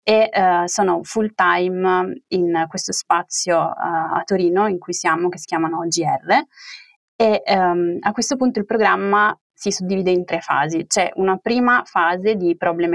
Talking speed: 155 wpm